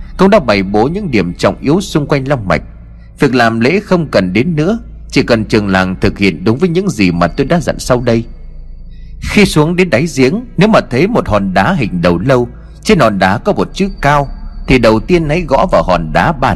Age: 30-49